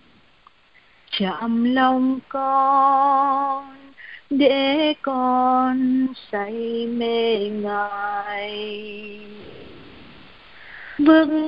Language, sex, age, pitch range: Vietnamese, female, 20-39, 255-370 Hz